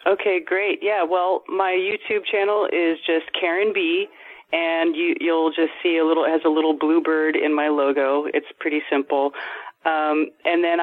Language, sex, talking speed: English, female, 175 wpm